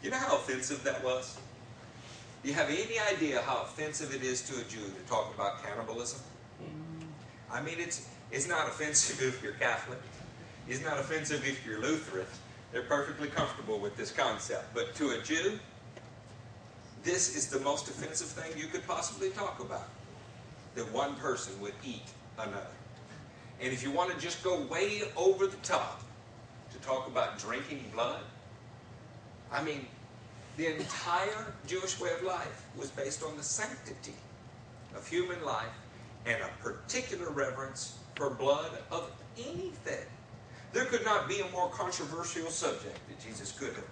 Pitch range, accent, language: 115-155 Hz, American, English